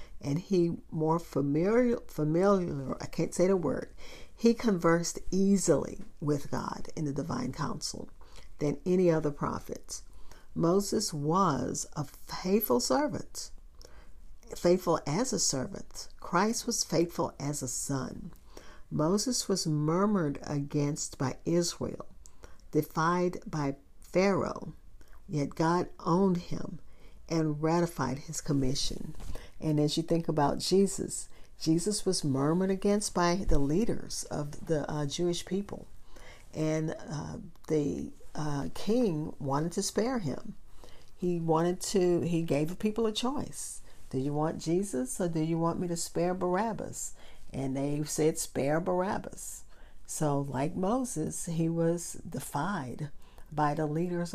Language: English